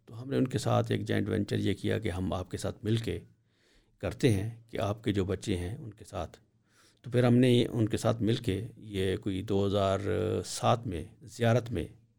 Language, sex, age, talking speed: English, male, 50-69, 170 wpm